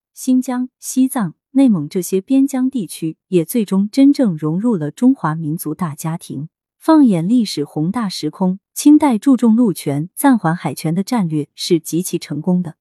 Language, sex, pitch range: Chinese, female, 160-245 Hz